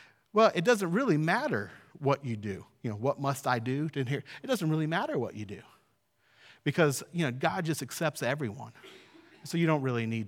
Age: 40-59